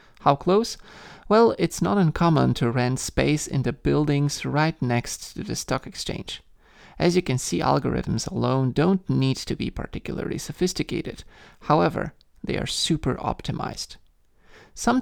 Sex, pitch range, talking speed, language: male, 125-170 Hz, 145 wpm, English